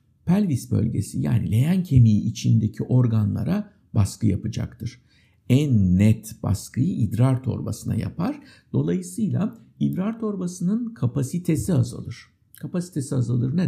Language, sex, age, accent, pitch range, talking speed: Turkish, male, 60-79, native, 110-185 Hz, 100 wpm